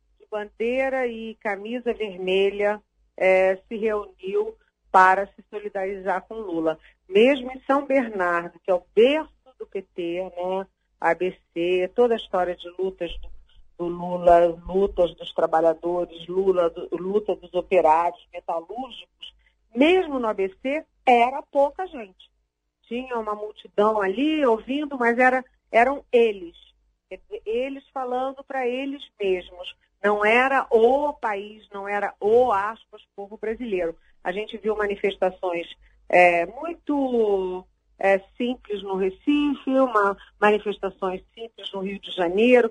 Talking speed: 120 wpm